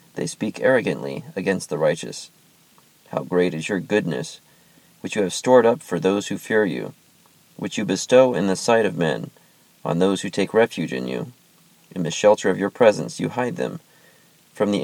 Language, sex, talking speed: English, male, 190 wpm